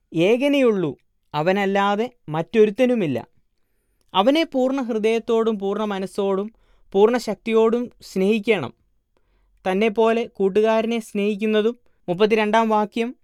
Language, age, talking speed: Malayalam, 20-39, 70 wpm